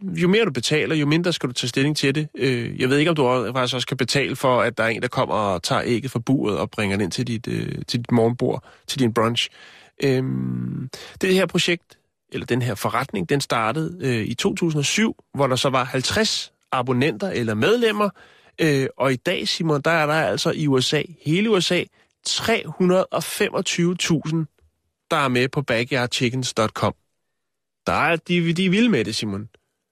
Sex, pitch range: male, 120-160 Hz